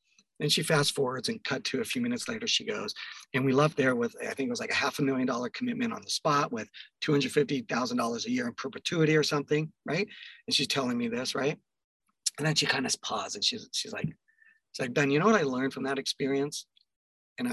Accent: American